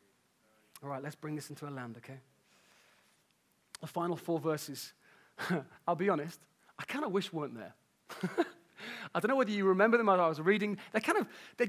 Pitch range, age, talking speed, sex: 165-220 Hz, 30-49, 190 wpm, male